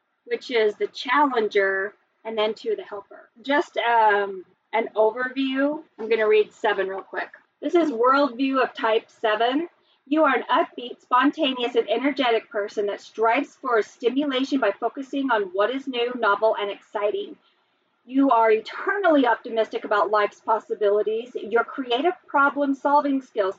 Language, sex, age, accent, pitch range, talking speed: English, female, 30-49, American, 215-280 Hz, 145 wpm